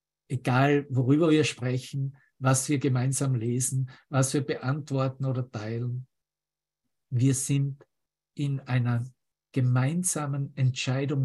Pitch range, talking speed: 125-145 Hz, 100 wpm